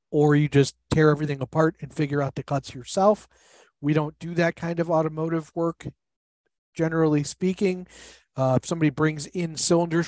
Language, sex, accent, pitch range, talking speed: English, male, American, 140-170 Hz, 165 wpm